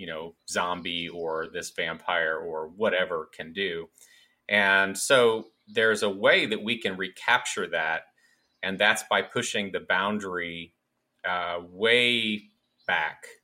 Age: 30-49